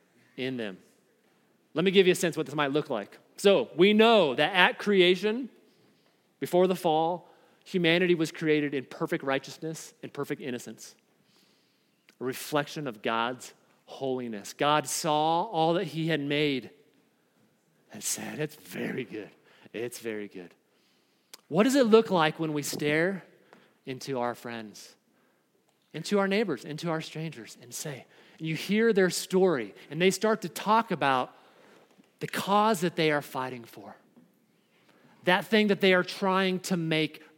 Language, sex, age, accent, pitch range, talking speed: English, male, 40-59, American, 145-205 Hz, 155 wpm